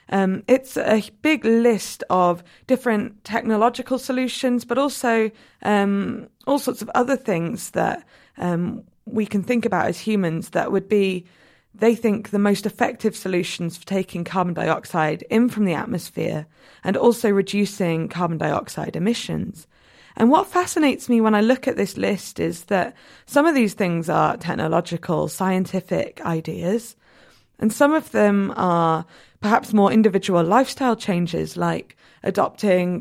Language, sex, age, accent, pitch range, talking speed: English, female, 20-39, British, 185-240 Hz, 145 wpm